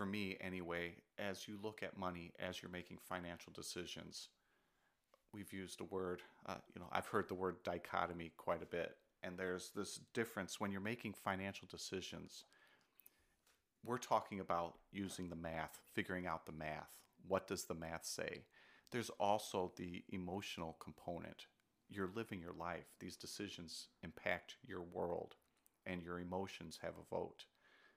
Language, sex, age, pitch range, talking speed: English, male, 40-59, 85-100 Hz, 155 wpm